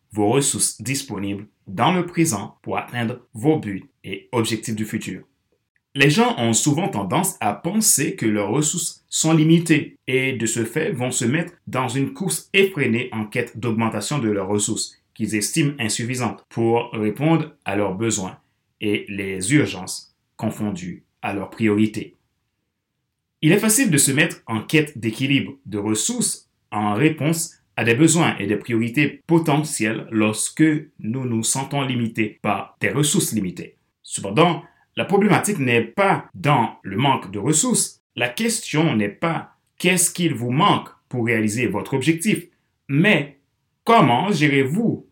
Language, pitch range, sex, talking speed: French, 110-165 Hz, male, 150 wpm